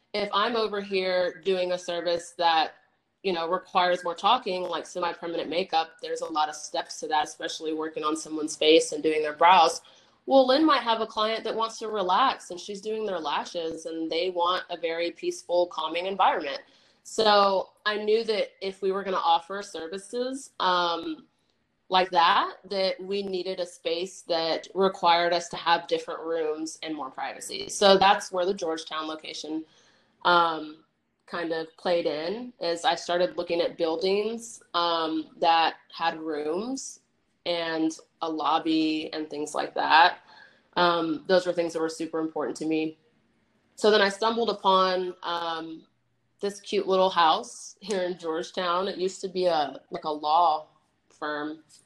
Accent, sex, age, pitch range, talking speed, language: American, female, 30-49, 160-195 Hz, 165 wpm, English